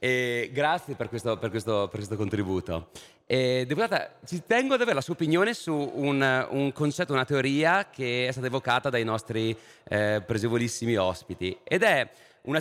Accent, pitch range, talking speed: native, 120-180 Hz, 170 wpm